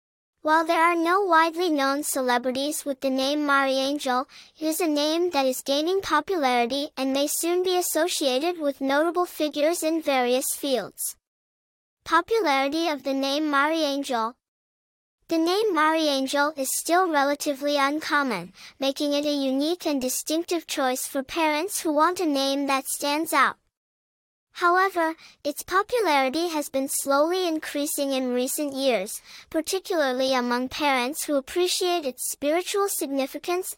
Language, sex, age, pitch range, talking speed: English, male, 10-29, 270-330 Hz, 140 wpm